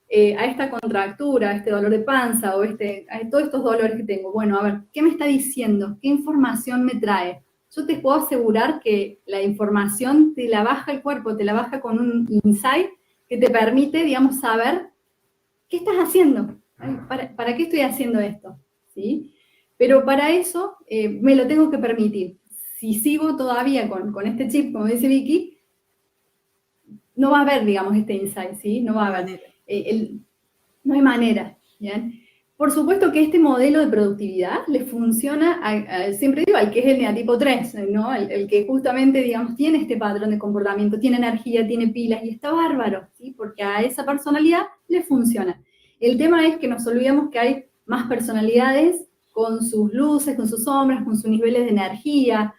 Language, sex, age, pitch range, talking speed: Spanish, female, 20-39, 215-280 Hz, 185 wpm